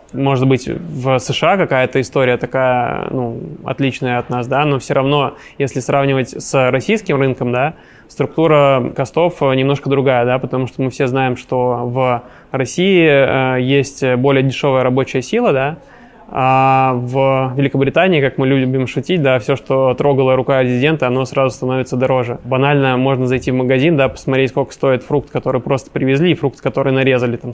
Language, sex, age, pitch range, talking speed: Russian, male, 20-39, 130-140 Hz, 165 wpm